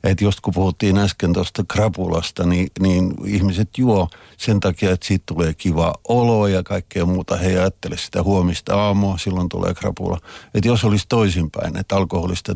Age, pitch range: 50-69, 90-110 Hz